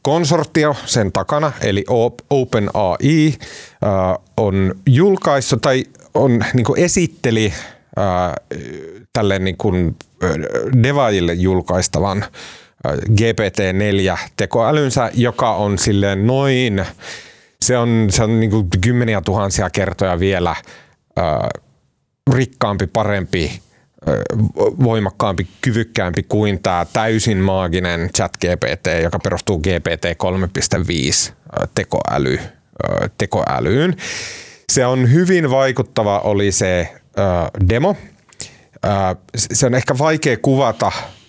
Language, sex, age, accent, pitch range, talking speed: Finnish, male, 30-49, native, 95-130 Hz, 80 wpm